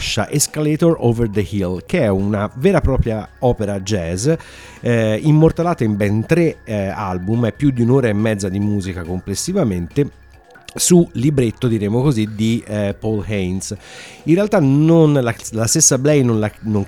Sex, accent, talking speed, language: male, native, 165 wpm, Italian